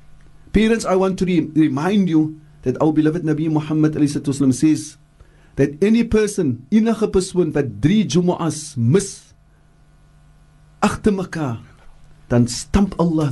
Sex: male